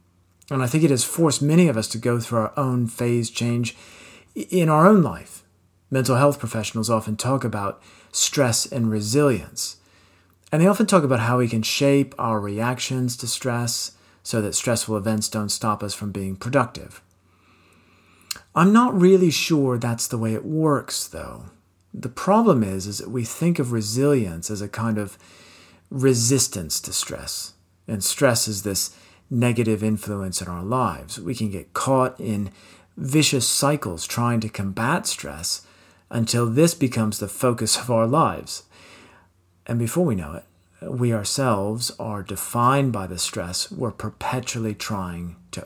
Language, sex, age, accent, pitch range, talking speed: English, male, 40-59, American, 95-130 Hz, 160 wpm